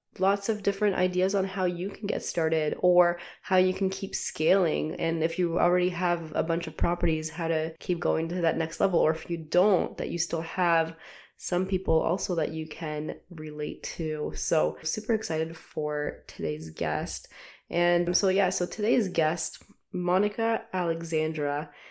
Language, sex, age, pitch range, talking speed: English, female, 20-39, 160-185 Hz, 175 wpm